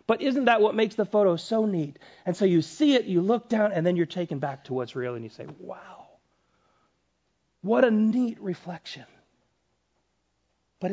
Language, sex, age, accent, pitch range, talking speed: English, male, 40-59, American, 125-210 Hz, 185 wpm